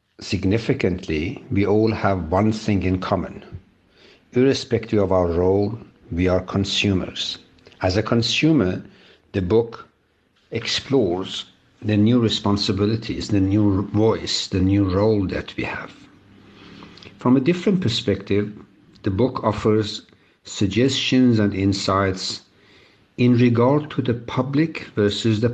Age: 60-79